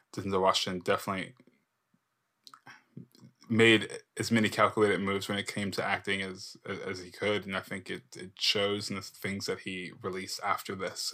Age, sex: 20-39, male